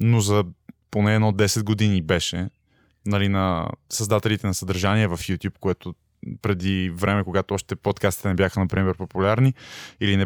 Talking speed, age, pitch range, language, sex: 150 wpm, 20-39, 100-125 Hz, Bulgarian, male